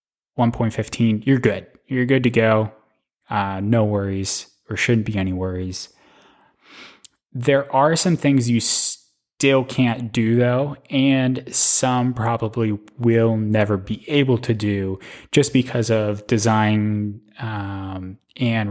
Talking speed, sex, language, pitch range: 120 wpm, male, English, 105-130 Hz